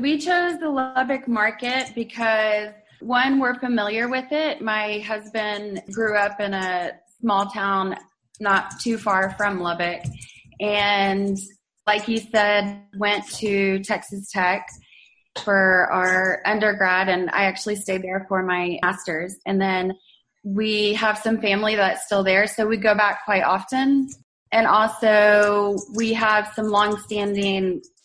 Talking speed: 135 wpm